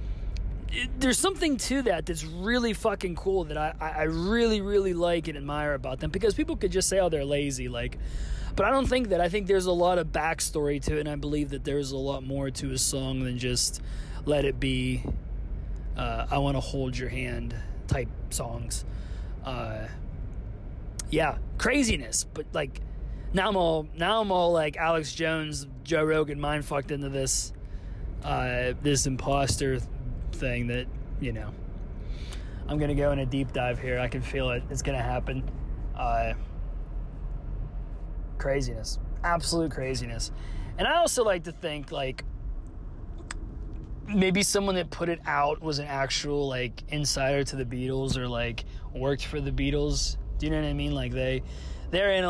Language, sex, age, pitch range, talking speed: English, male, 20-39, 120-160 Hz, 175 wpm